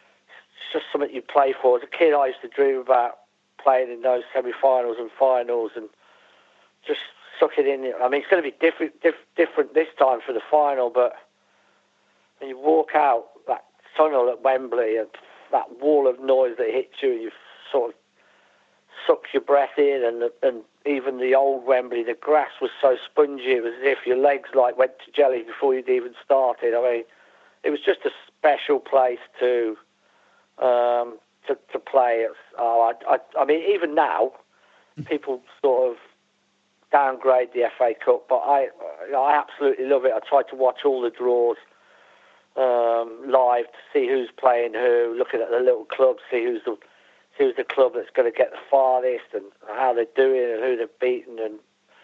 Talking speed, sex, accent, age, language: 185 wpm, male, British, 50-69, English